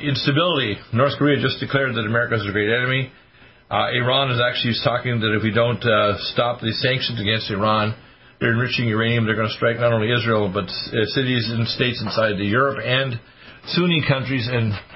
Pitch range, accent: 105-130 Hz, American